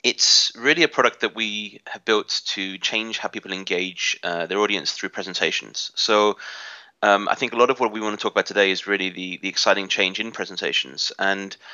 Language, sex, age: English, male, 30-49